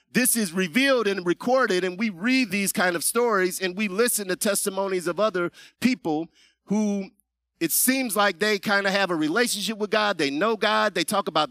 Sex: male